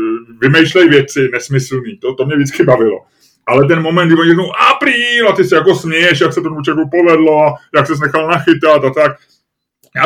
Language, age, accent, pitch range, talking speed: Czech, 20-39, native, 140-170 Hz, 185 wpm